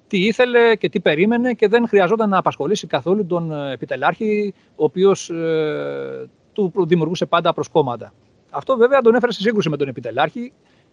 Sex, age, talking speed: male, 40-59, 155 wpm